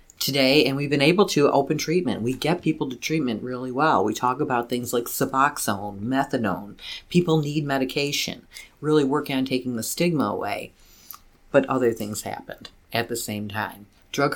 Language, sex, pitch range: English, female, 115-140 Hz